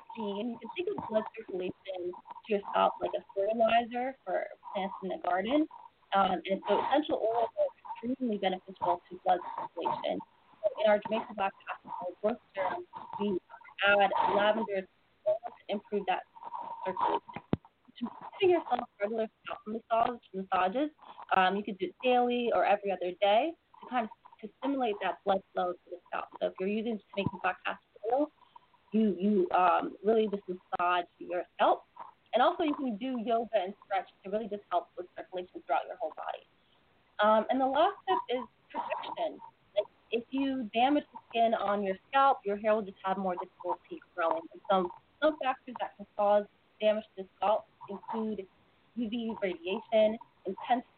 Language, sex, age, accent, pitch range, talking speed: English, female, 20-39, American, 200-300 Hz, 170 wpm